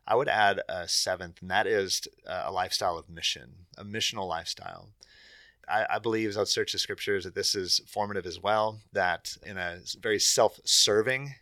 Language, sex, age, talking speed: English, male, 30-49, 180 wpm